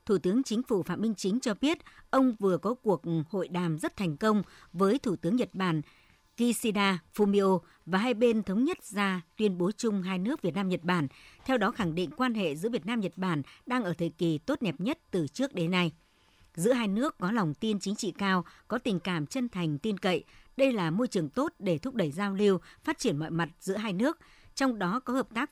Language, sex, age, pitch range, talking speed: Vietnamese, male, 60-79, 175-235 Hz, 230 wpm